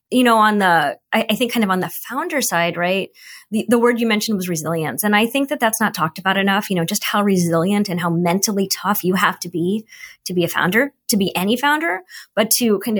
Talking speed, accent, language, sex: 245 wpm, American, English, female